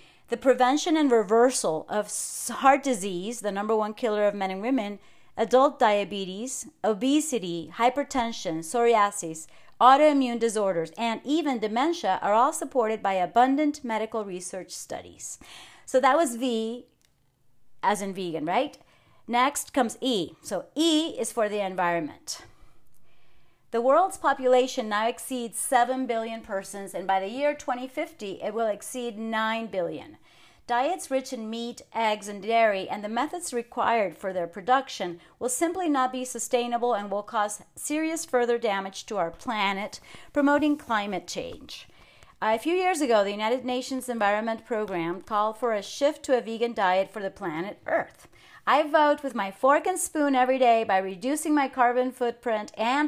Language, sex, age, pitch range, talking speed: English, female, 40-59, 210-270 Hz, 155 wpm